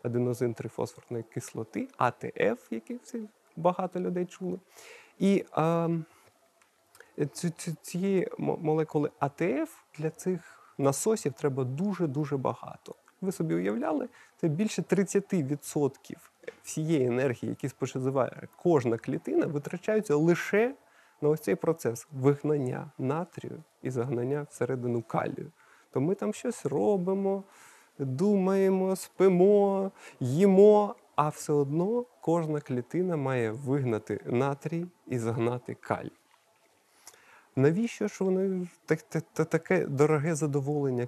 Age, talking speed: 30-49, 100 wpm